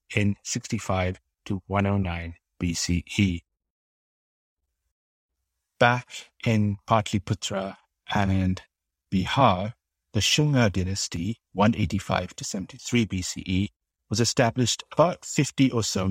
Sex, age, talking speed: male, 50-69, 85 wpm